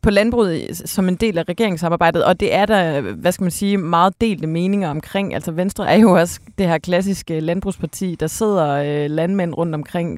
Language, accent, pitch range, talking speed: Danish, native, 155-185 Hz, 200 wpm